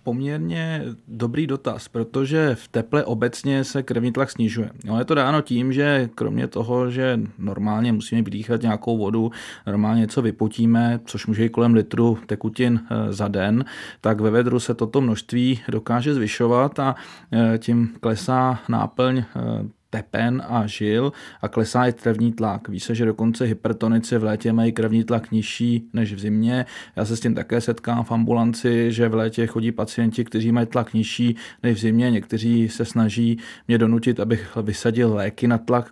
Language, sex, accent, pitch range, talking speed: Czech, male, native, 110-125 Hz, 165 wpm